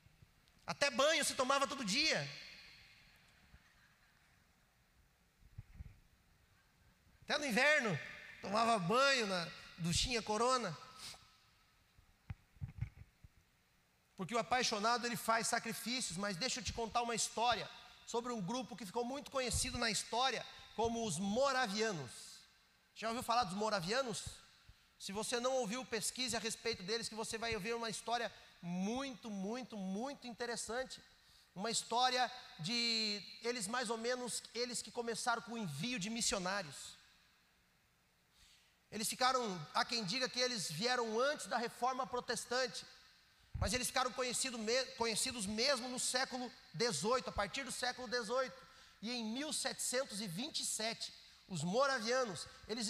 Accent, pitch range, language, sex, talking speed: Brazilian, 215-250 Hz, Portuguese, male, 125 wpm